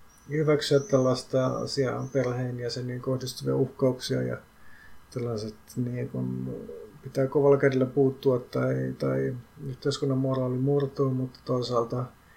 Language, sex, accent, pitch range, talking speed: Finnish, male, native, 125-140 Hz, 100 wpm